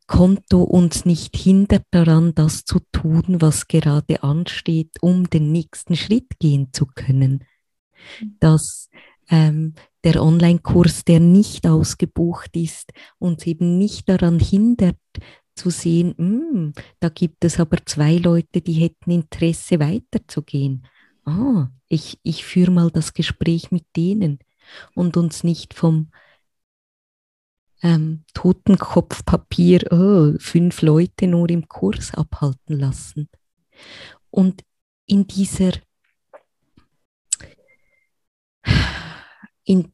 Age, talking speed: 20-39, 105 wpm